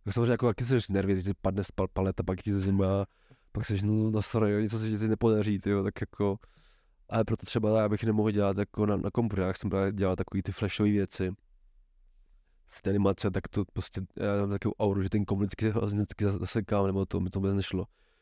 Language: Czech